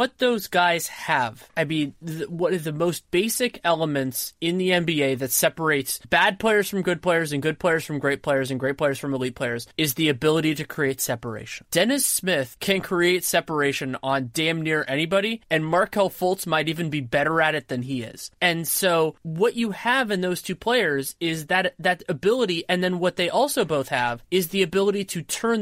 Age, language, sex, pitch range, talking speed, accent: 20-39, English, male, 145-185 Hz, 205 wpm, American